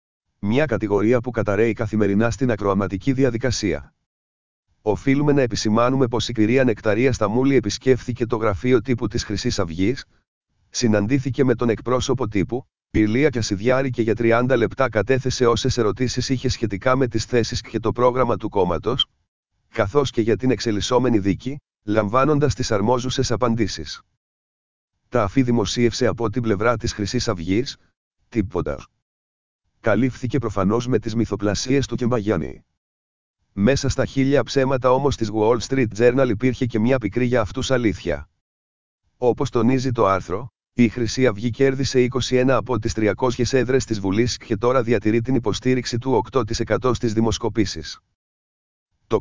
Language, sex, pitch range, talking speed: Greek, male, 105-130 Hz, 145 wpm